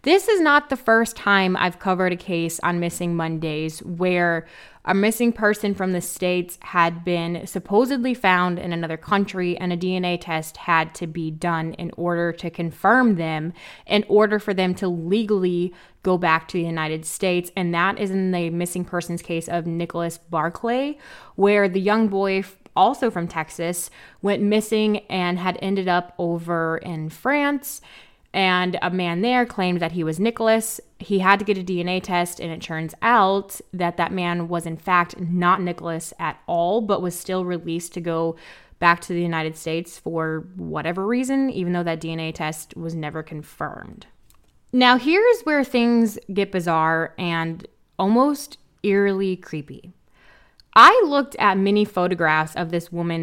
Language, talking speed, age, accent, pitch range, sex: English, 170 wpm, 20-39, American, 170-200 Hz, female